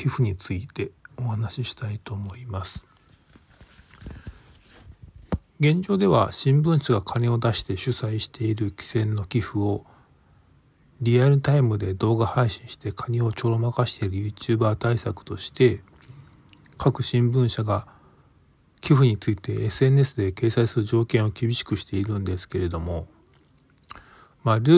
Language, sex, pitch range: Japanese, male, 100-125 Hz